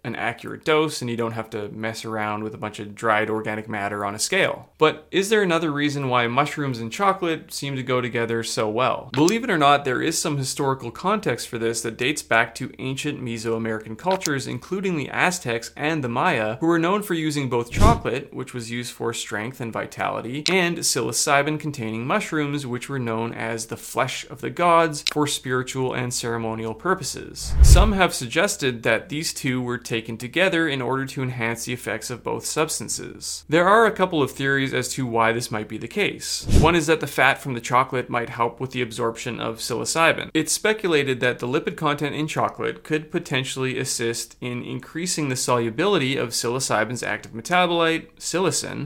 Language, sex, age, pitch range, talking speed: English, male, 30-49, 115-155 Hz, 195 wpm